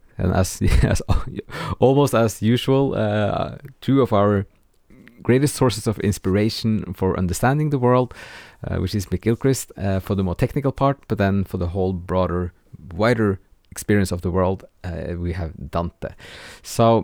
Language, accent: English, Norwegian